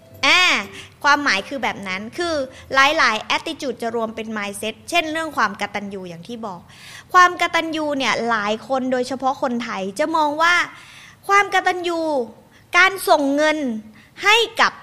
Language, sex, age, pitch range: Thai, female, 20-39, 230-325 Hz